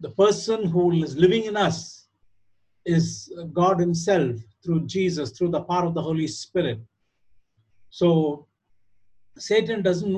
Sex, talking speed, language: male, 130 wpm, English